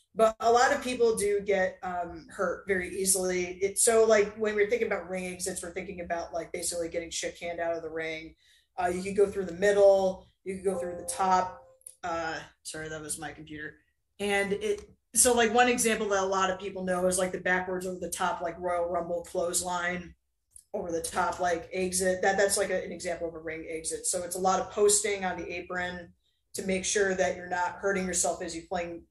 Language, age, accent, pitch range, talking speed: English, 20-39, American, 175-195 Hz, 225 wpm